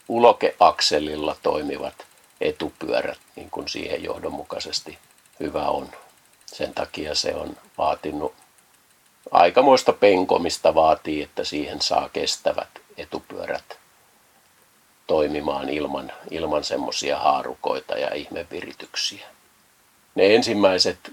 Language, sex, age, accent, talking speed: Finnish, male, 50-69, native, 90 wpm